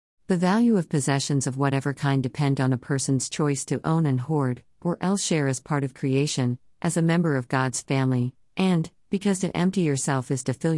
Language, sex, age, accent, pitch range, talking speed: English, female, 50-69, American, 130-170 Hz, 205 wpm